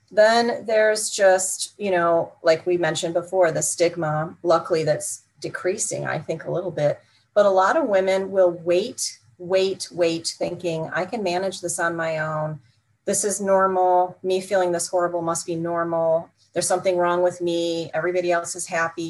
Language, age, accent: English, 30-49, American